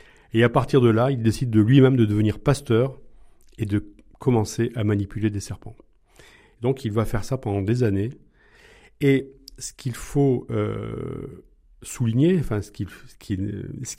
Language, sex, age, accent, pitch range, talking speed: French, male, 40-59, French, 105-135 Hz, 165 wpm